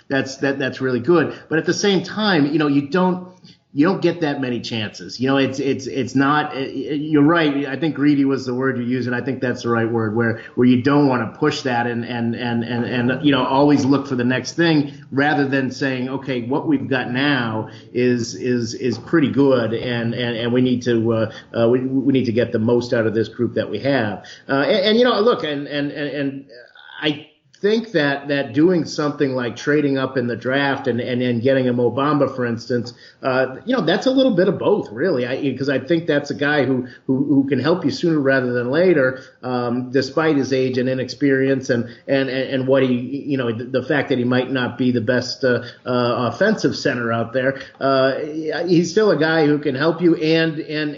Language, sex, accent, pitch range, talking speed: English, male, American, 125-145 Hz, 230 wpm